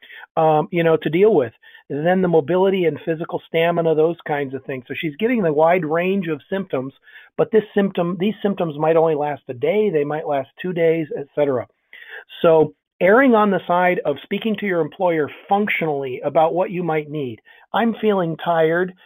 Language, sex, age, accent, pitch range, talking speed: English, male, 40-59, American, 145-180 Hz, 185 wpm